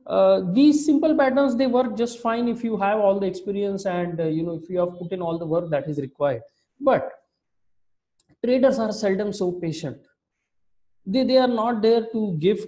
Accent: Indian